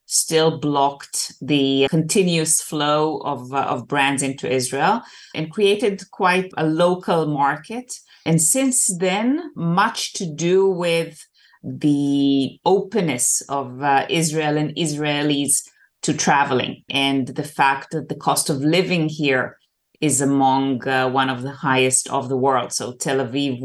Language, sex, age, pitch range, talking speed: English, female, 30-49, 140-165 Hz, 140 wpm